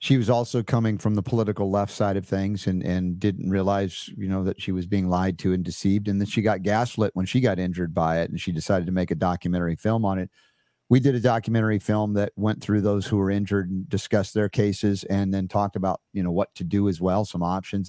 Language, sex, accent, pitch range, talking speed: English, male, American, 95-110 Hz, 250 wpm